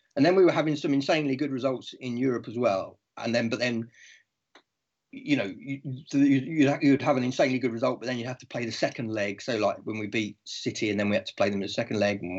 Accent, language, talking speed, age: British, English, 250 wpm, 30-49